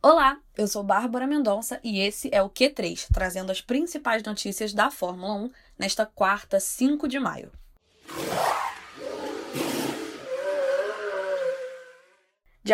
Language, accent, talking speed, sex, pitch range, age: Portuguese, Brazilian, 110 wpm, female, 205-260 Hz, 10-29